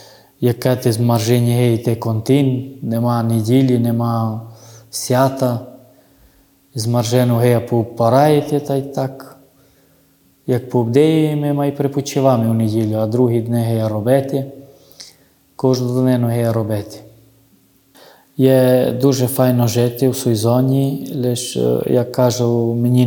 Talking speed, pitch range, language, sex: 115 wpm, 115-135 Hz, Ukrainian, male